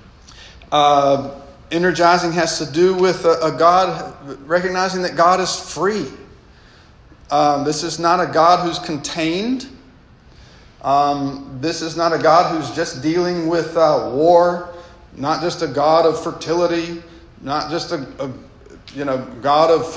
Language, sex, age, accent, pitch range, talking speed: English, male, 40-59, American, 140-170 Hz, 145 wpm